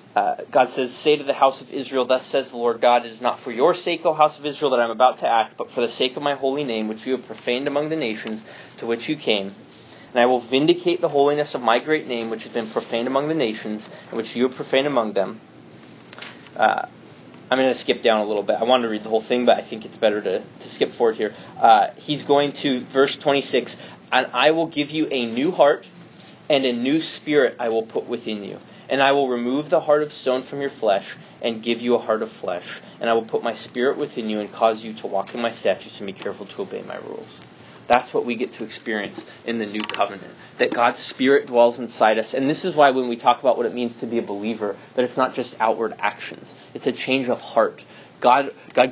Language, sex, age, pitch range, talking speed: English, male, 20-39, 115-145 Hz, 255 wpm